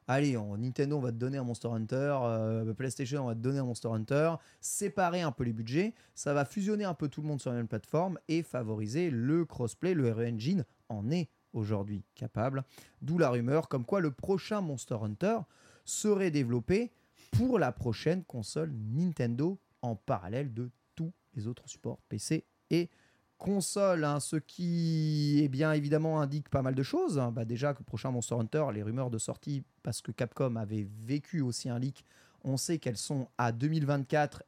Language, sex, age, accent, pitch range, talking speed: French, male, 30-49, French, 115-155 Hz, 190 wpm